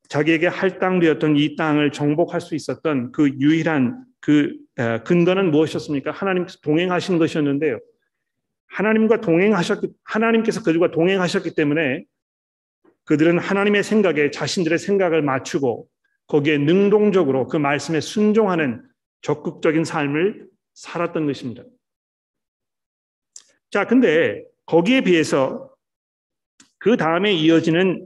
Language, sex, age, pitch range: Korean, male, 40-59, 145-185 Hz